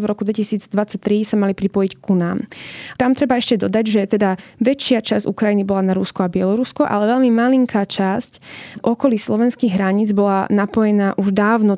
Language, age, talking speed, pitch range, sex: Slovak, 20-39, 170 wpm, 195-220 Hz, female